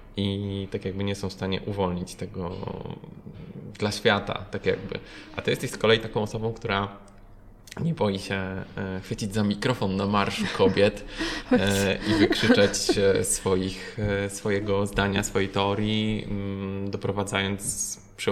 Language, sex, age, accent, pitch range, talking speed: Polish, male, 20-39, native, 95-105 Hz, 130 wpm